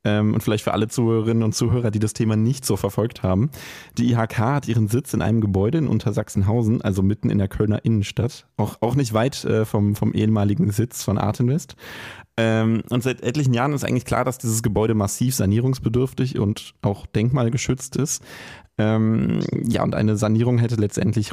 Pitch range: 100-120 Hz